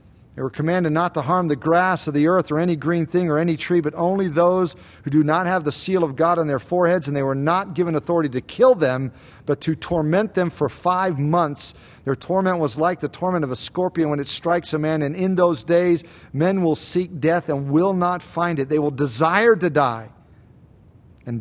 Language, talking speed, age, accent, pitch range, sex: English, 225 wpm, 50-69, American, 140-180 Hz, male